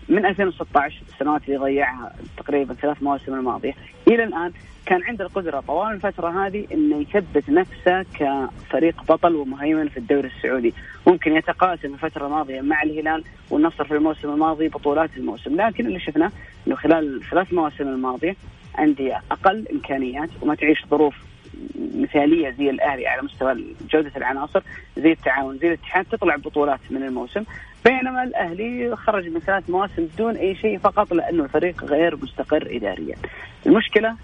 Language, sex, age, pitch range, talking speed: Arabic, female, 30-49, 145-185 Hz, 145 wpm